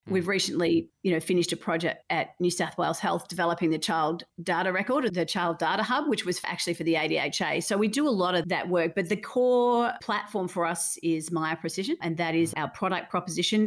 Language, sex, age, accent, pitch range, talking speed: English, female, 40-59, Australian, 170-200 Hz, 225 wpm